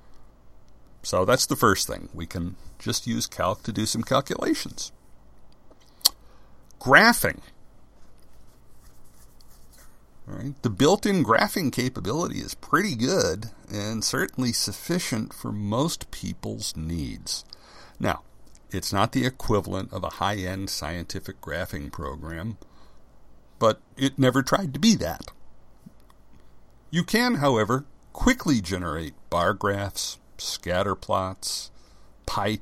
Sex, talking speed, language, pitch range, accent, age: male, 105 wpm, English, 90-120 Hz, American, 60-79